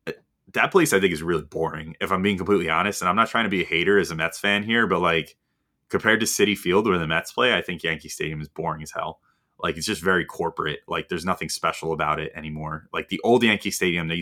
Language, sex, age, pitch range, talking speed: English, male, 20-39, 80-90 Hz, 260 wpm